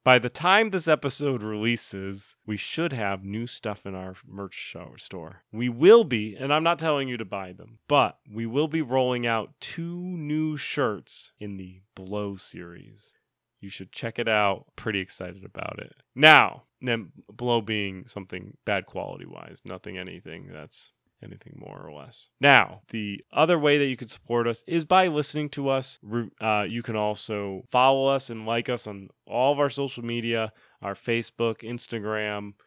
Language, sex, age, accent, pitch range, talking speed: English, male, 30-49, American, 105-140 Hz, 170 wpm